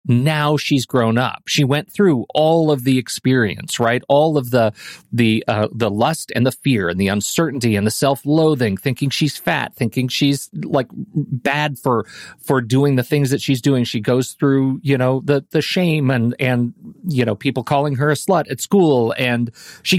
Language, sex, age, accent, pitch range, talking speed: English, male, 40-59, American, 115-145 Hz, 190 wpm